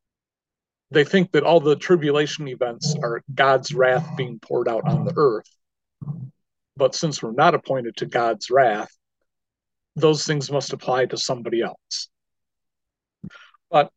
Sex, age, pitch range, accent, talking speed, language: male, 50-69, 130-160 Hz, American, 135 wpm, English